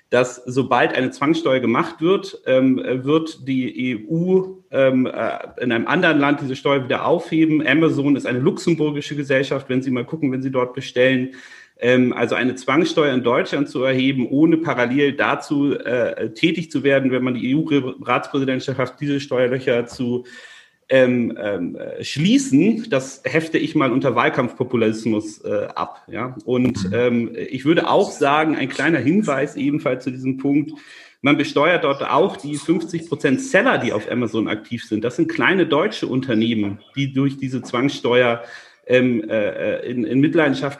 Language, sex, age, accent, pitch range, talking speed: German, male, 40-59, German, 125-150 Hz, 145 wpm